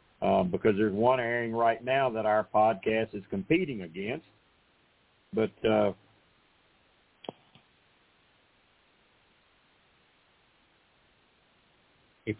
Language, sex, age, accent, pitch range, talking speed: English, male, 50-69, American, 110-135 Hz, 75 wpm